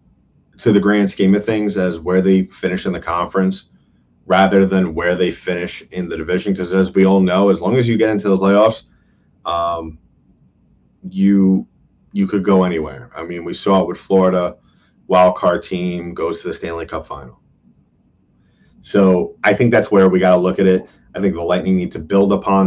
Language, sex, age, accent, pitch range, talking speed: English, male, 30-49, American, 95-105 Hz, 200 wpm